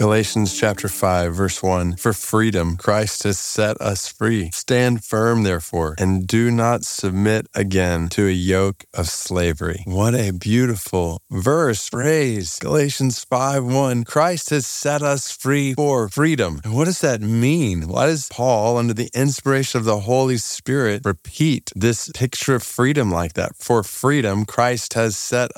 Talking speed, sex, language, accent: 155 wpm, male, English, American